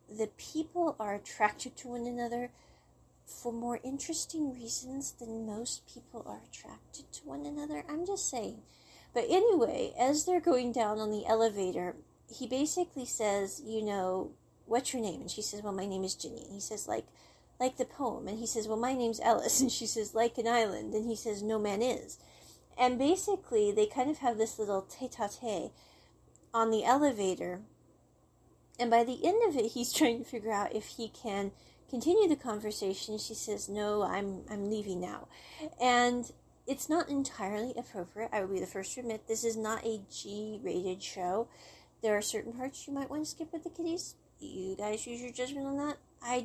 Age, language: 40-59, English